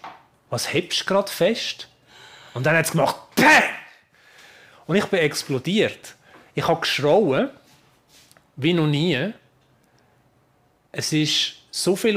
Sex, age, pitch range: male, 30-49, 135-175 Hz